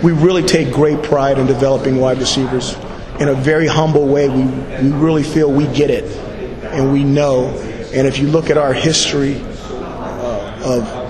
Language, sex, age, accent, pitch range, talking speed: English, male, 30-49, American, 135-150 Hz, 175 wpm